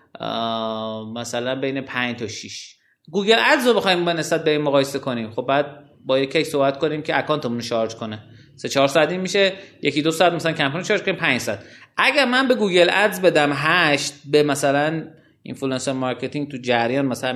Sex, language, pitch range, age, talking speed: male, Persian, 130-175 Hz, 30-49, 180 wpm